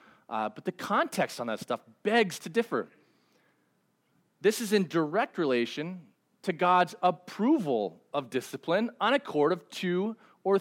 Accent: American